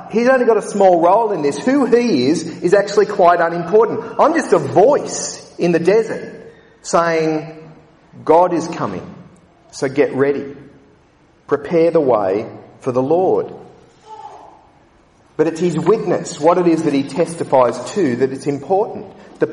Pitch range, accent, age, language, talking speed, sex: 145-195 Hz, Australian, 40-59, English, 155 wpm, male